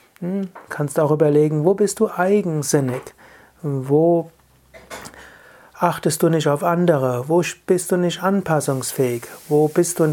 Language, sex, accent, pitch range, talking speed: German, male, German, 140-175 Hz, 135 wpm